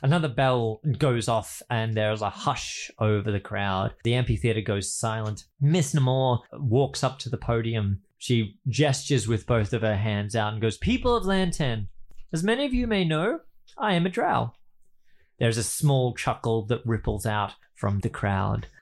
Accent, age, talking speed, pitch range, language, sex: Australian, 20-39, 175 wpm, 110-150 Hz, English, male